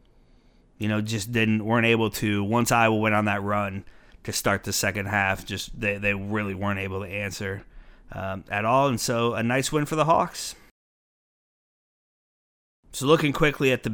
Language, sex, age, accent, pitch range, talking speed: English, male, 30-49, American, 105-125 Hz, 180 wpm